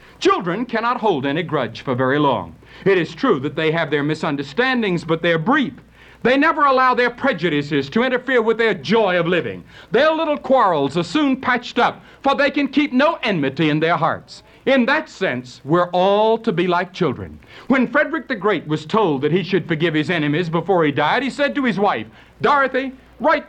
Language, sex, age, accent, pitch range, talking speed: English, male, 60-79, American, 170-265 Hz, 200 wpm